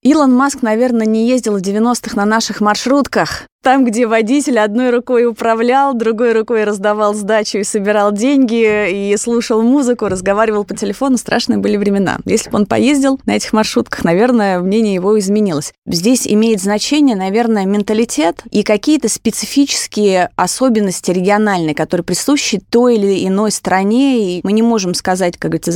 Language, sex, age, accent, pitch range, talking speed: Russian, female, 20-39, native, 185-235 Hz, 155 wpm